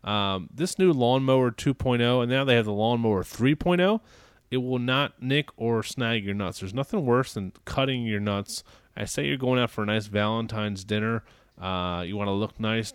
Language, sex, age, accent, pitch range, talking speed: English, male, 30-49, American, 105-125 Hz, 200 wpm